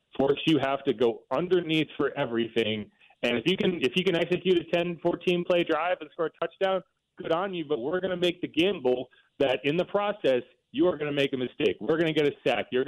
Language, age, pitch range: English, 30-49, 120-170 Hz